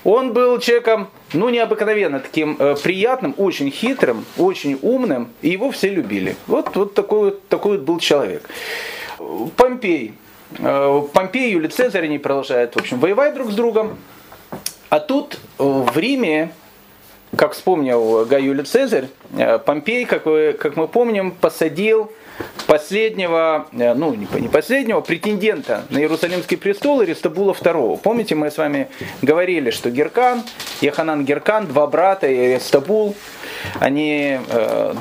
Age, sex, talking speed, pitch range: 30-49, male, 135 wpm, 150-245 Hz